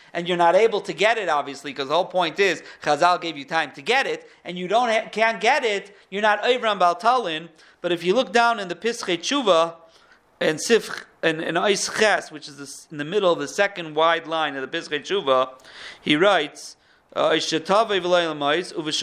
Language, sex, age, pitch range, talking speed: English, male, 40-59, 150-200 Hz, 185 wpm